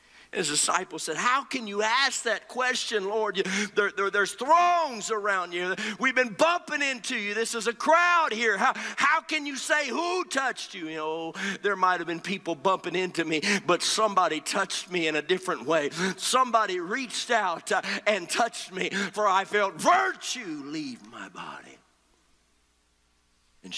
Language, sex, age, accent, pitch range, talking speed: English, male, 50-69, American, 155-235 Hz, 170 wpm